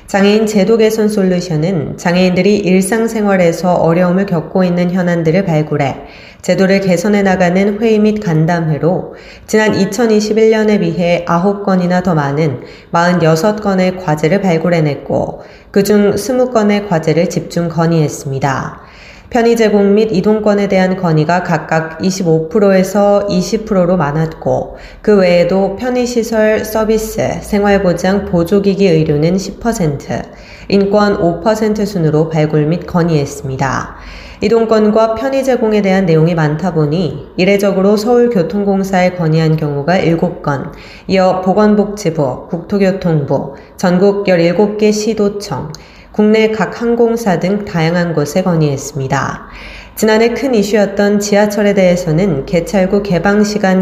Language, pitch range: Korean, 165-205 Hz